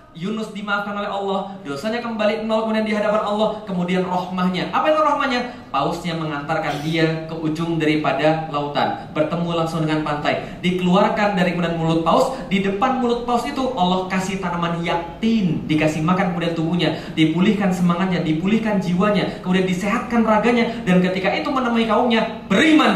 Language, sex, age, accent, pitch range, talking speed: Indonesian, male, 30-49, native, 170-230 Hz, 145 wpm